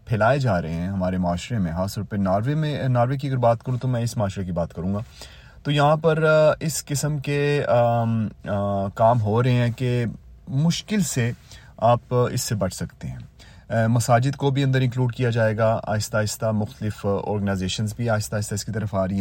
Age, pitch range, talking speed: 30-49, 100-125 Hz, 205 wpm